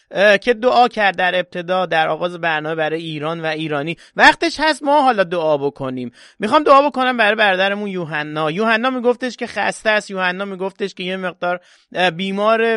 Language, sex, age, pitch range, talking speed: English, male, 30-49, 180-245 Hz, 170 wpm